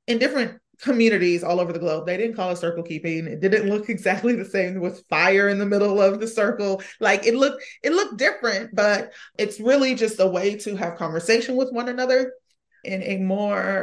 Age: 30-49